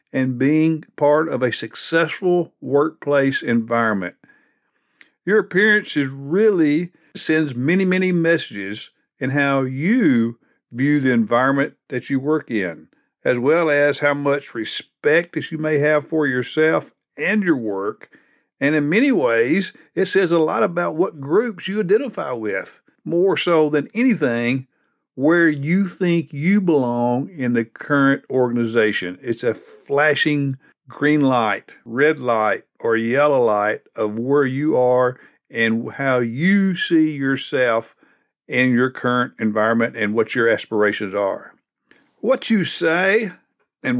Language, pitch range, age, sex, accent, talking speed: English, 125-170 Hz, 50-69, male, American, 135 wpm